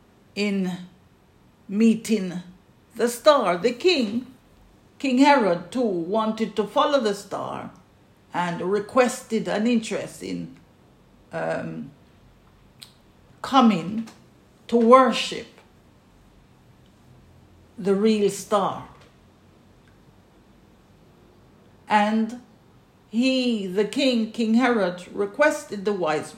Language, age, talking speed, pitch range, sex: English, 50-69, 80 wpm, 185-230 Hz, female